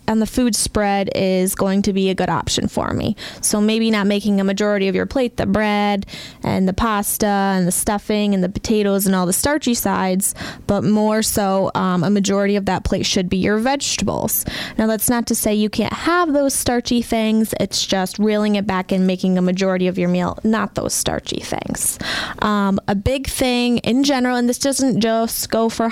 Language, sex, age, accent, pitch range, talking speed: English, female, 20-39, American, 200-235 Hz, 210 wpm